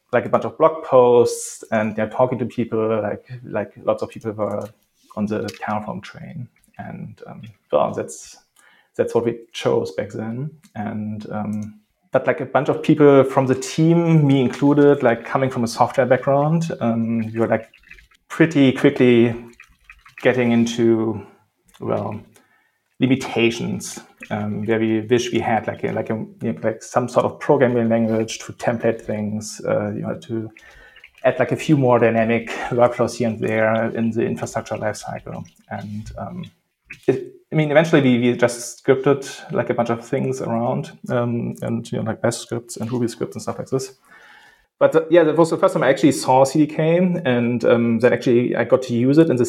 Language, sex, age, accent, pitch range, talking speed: English, male, 30-49, German, 115-140 Hz, 185 wpm